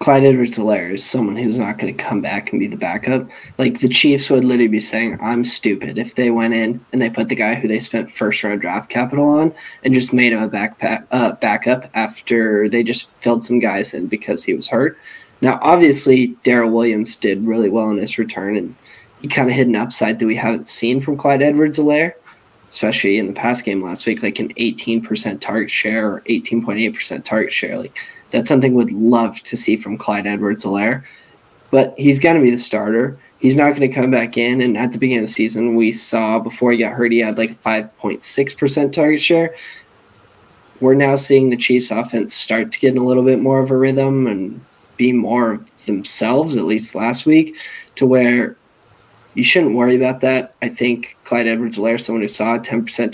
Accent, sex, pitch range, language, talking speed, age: American, male, 115-130 Hz, English, 210 wpm, 10-29